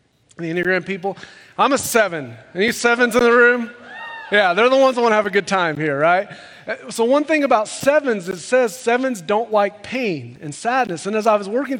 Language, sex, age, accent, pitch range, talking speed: English, male, 30-49, American, 160-235 Hz, 220 wpm